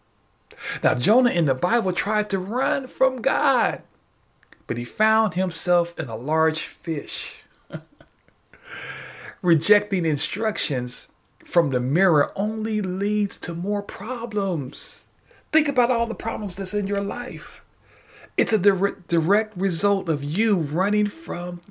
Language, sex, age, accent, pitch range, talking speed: English, male, 40-59, American, 160-220 Hz, 125 wpm